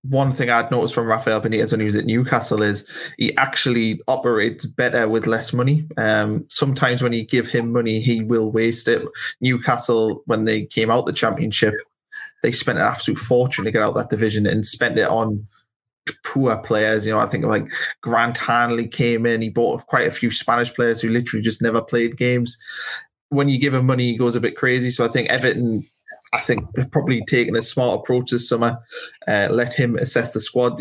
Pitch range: 110-125 Hz